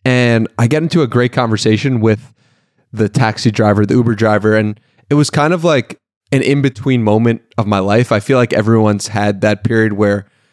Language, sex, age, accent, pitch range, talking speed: English, male, 30-49, American, 110-140 Hz, 195 wpm